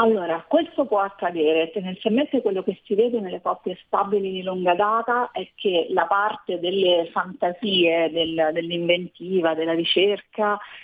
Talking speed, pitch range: 140 wpm, 165-210 Hz